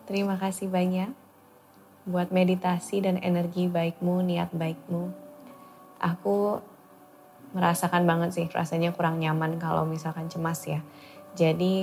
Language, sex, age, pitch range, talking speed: English, female, 20-39, 170-190 Hz, 110 wpm